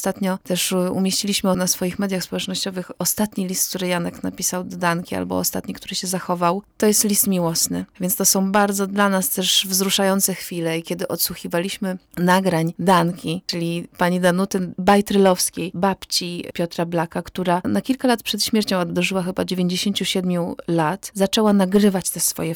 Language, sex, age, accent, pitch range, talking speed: Polish, female, 20-39, native, 170-195 Hz, 155 wpm